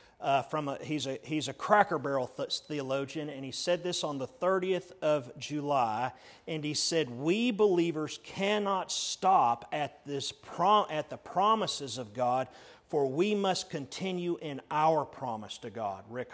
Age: 40-59